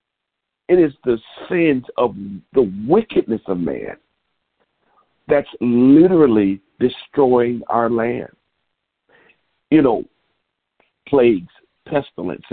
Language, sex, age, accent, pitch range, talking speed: English, male, 50-69, American, 110-135 Hz, 85 wpm